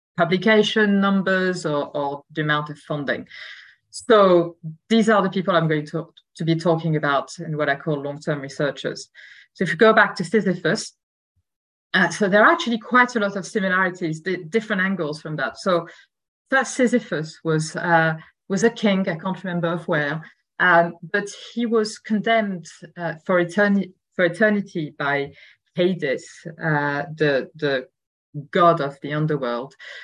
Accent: French